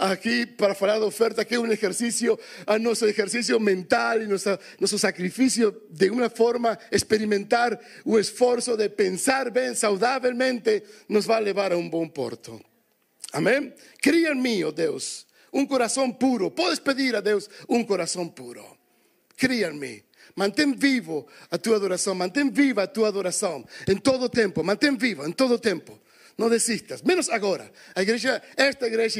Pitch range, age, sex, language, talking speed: 210-265 Hz, 50-69, male, Portuguese, 165 wpm